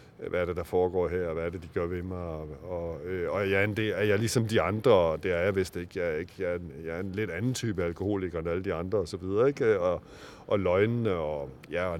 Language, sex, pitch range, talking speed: Danish, male, 95-115 Hz, 295 wpm